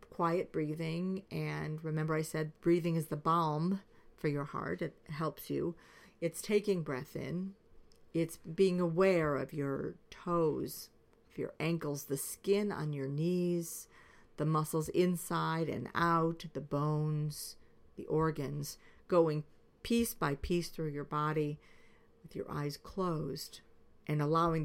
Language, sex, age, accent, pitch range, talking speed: English, female, 50-69, American, 150-175 Hz, 135 wpm